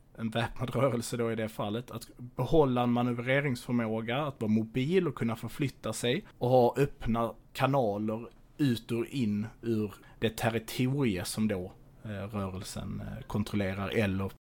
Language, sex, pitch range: Swedish, male, 110-130 Hz